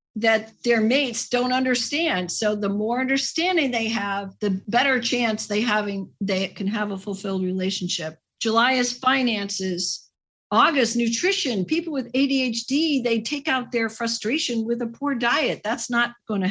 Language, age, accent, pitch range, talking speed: English, 50-69, American, 210-275 Hz, 155 wpm